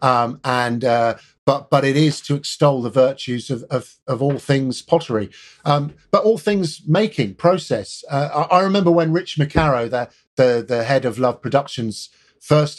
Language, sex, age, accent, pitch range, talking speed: English, male, 50-69, British, 120-155 Hz, 180 wpm